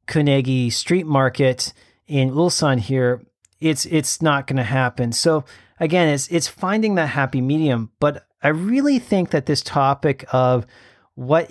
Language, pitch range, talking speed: English, 130-165 Hz, 150 wpm